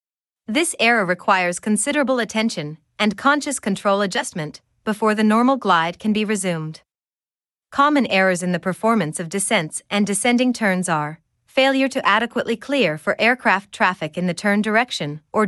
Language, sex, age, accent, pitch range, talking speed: English, female, 30-49, American, 180-235 Hz, 150 wpm